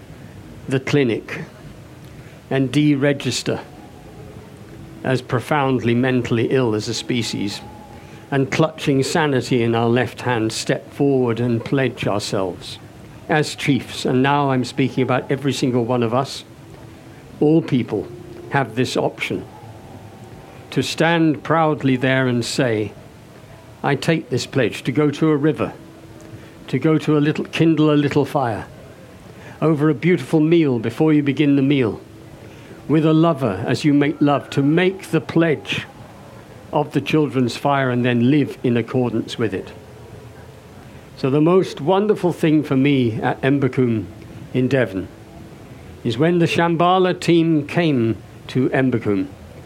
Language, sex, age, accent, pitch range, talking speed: English, male, 60-79, British, 115-150 Hz, 140 wpm